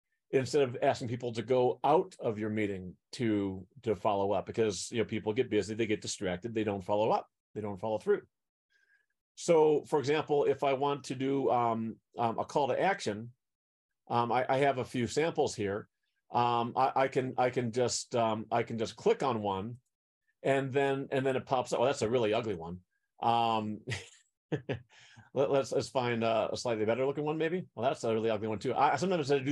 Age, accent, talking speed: 40-59, American, 205 wpm